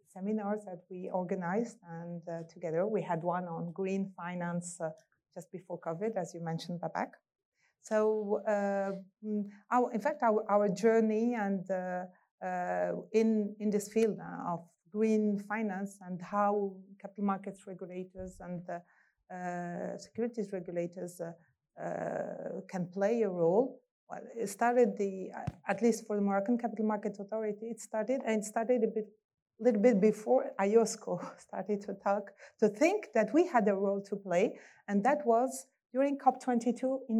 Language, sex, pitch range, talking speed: English, female, 185-220 Hz, 155 wpm